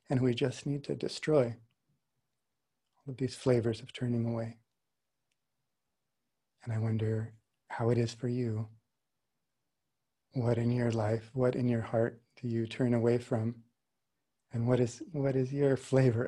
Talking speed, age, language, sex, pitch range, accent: 150 wpm, 30-49, English, male, 120-135 Hz, American